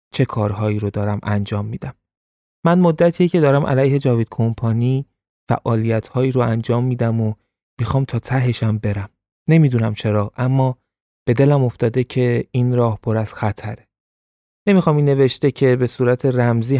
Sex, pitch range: male, 110-130 Hz